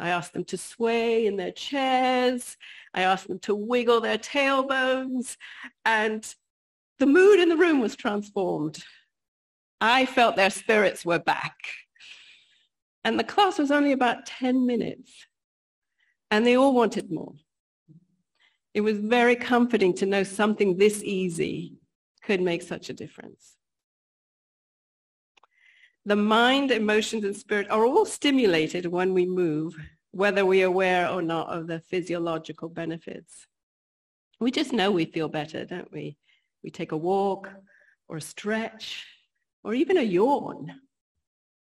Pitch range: 180-235 Hz